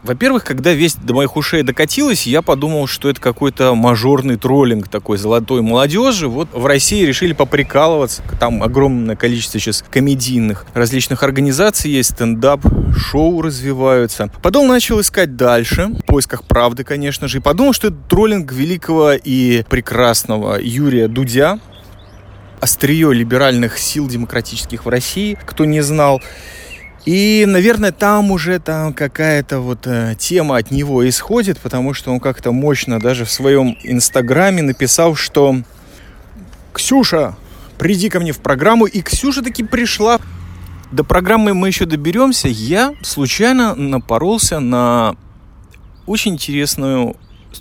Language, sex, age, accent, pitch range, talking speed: Russian, male, 20-39, native, 120-165 Hz, 130 wpm